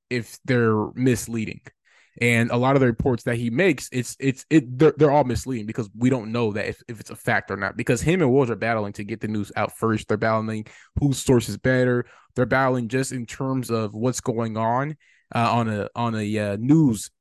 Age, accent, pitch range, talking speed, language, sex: 20-39, American, 110-130 Hz, 225 wpm, English, male